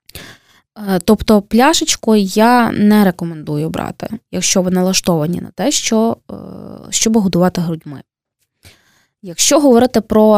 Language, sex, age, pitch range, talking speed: Ukrainian, female, 20-39, 180-235 Hz, 105 wpm